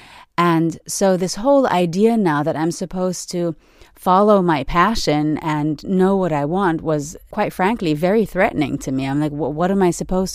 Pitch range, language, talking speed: 150-190 Hz, English, 180 wpm